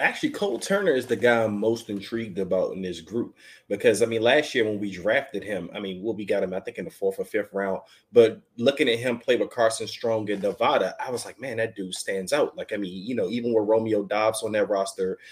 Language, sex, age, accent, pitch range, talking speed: English, male, 30-49, American, 110-150 Hz, 255 wpm